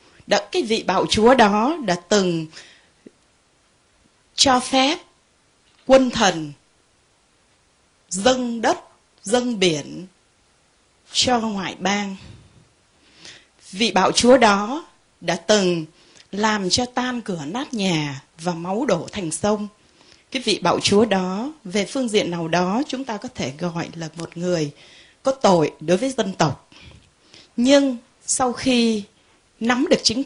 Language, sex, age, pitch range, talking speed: Vietnamese, female, 20-39, 180-245 Hz, 130 wpm